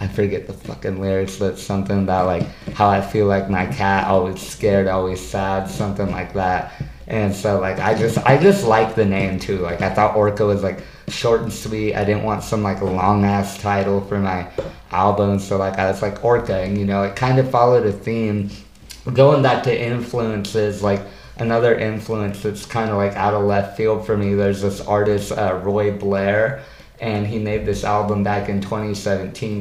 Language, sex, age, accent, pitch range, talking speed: English, male, 20-39, American, 95-105 Hz, 205 wpm